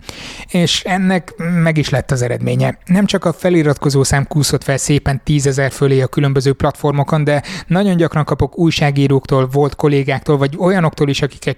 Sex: male